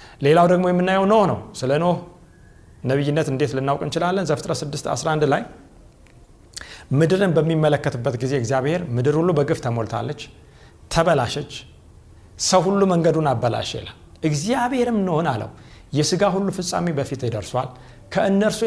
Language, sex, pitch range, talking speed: Amharic, male, 120-180 Hz, 110 wpm